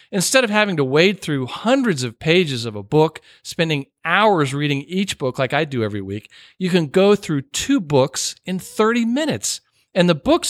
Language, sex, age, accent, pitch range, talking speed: English, male, 50-69, American, 130-180 Hz, 195 wpm